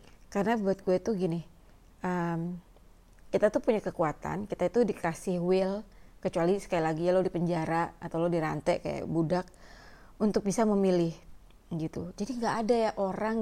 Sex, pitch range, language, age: female, 175-210 Hz, Indonesian, 30-49